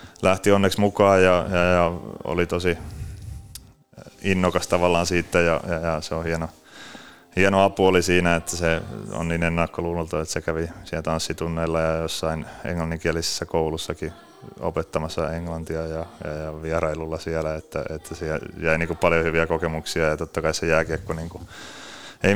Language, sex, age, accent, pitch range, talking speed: Finnish, male, 30-49, native, 80-90 Hz, 155 wpm